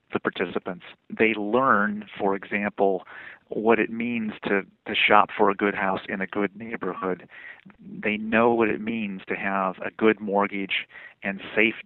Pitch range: 100-110 Hz